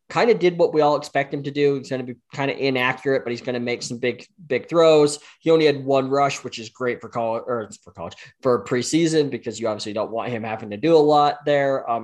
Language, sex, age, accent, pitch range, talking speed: English, male, 20-39, American, 110-140 Hz, 270 wpm